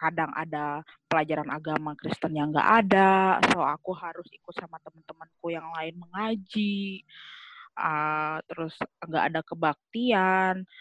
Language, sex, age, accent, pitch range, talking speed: Indonesian, female, 20-39, native, 165-210 Hz, 120 wpm